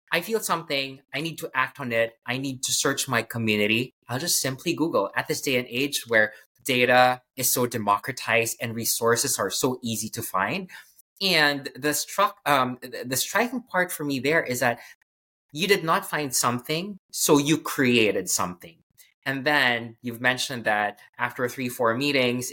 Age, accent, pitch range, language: 20-39, Filipino, 115-150 Hz, English